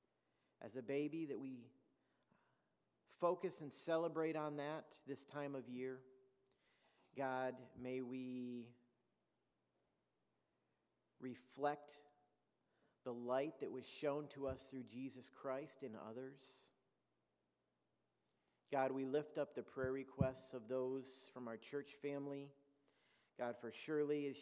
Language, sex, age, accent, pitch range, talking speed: English, male, 50-69, American, 125-145 Hz, 115 wpm